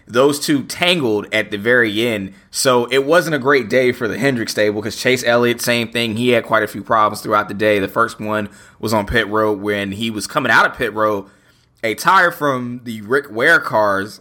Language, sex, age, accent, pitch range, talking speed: English, male, 20-39, American, 105-125 Hz, 225 wpm